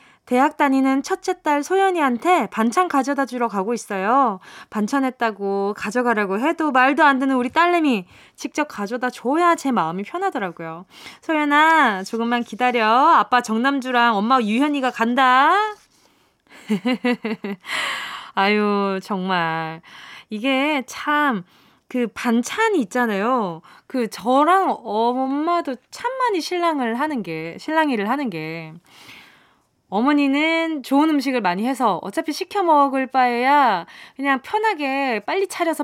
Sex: female